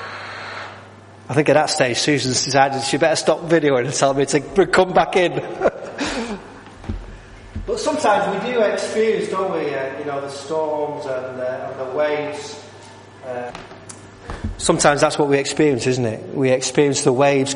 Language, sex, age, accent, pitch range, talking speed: English, male, 30-49, British, 120-150 Hz, 160 wpm